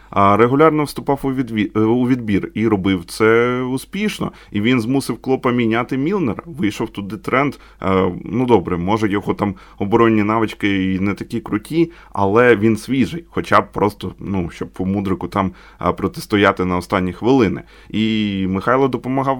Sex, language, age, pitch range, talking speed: male, Ukrainian, 20-39, 95-125 Hz, 140 wpm